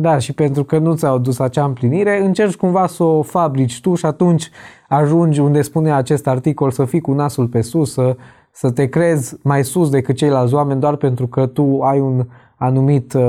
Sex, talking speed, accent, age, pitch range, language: male, 200 wpm, native, 20-39, 120-150 Hz, Romanian